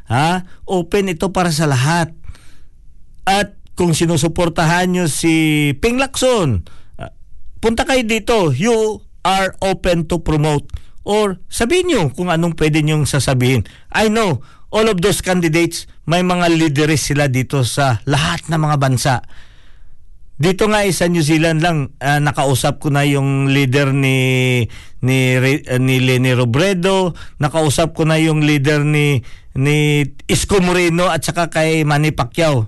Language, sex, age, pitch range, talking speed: Filipino, male, 50-69, 130-175 Hz, 145 wpm